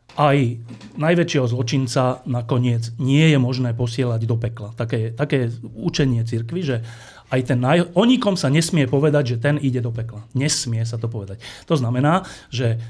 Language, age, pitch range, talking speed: Slovak, 40-59, 115-145 Hz, 155 wpm